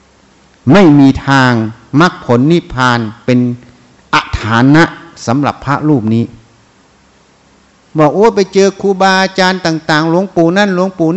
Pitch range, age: 125-190 Hz, 60-79